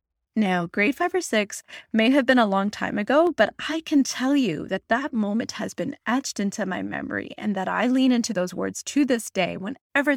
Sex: female